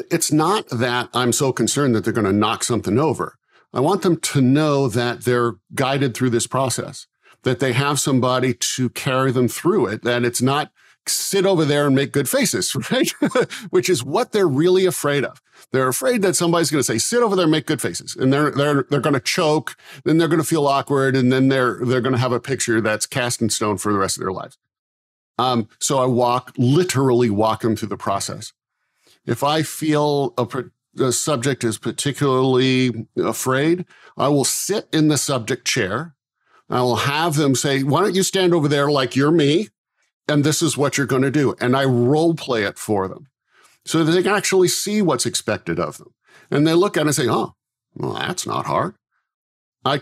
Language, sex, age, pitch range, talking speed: English, male, 50-69, 125-155 Hz, 205 wpm